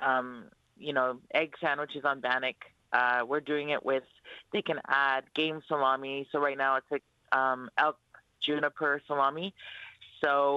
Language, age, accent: English, 30-49, American